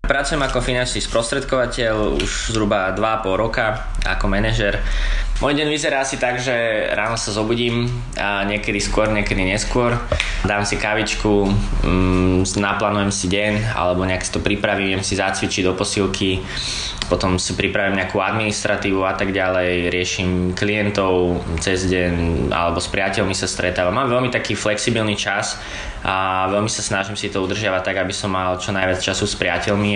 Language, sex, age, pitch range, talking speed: Slovak, male, 20-39, 90-105 Hz, 160 wpm